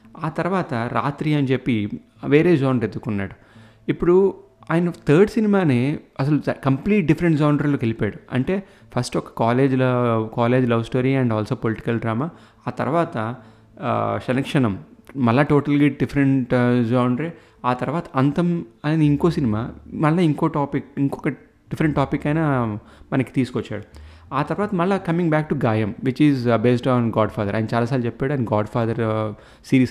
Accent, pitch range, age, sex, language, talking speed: native, 115-145 Hz, 30-49, male, Telugu, 140 wpm